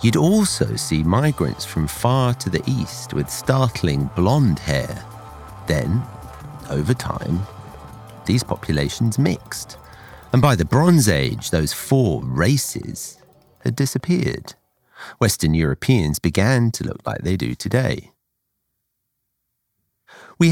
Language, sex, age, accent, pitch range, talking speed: English, male, 40-59, British, 75-120 Hz, 115 wpm